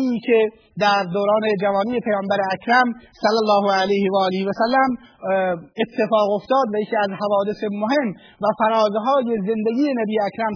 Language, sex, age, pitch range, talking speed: Persian, male, 30-49, 200-235 Hz, 135 wpm